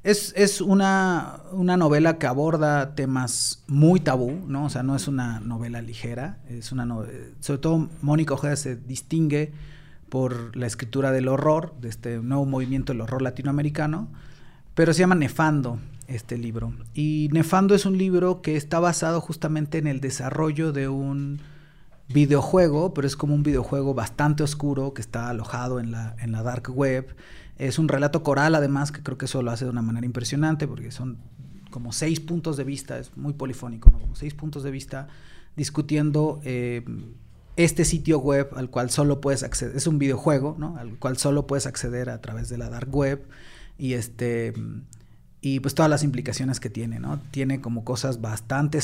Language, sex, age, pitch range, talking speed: Spanish, male, 30-49, 125-150 Hz, 180 wpm